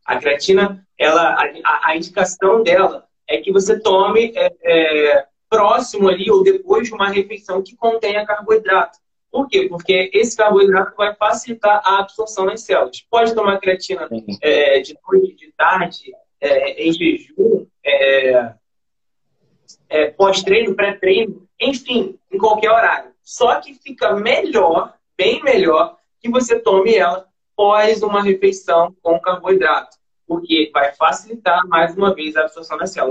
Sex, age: male, 20-39